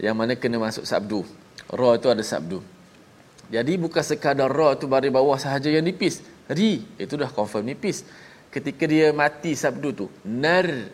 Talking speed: 165 wpm